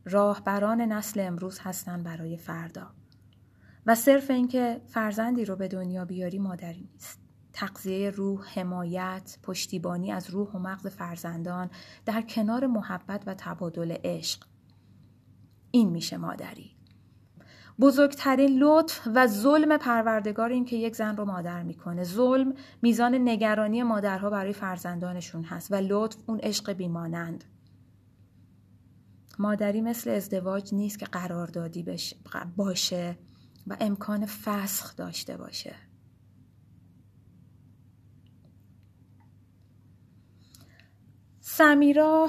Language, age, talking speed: Persian, 30-49, 100 wpm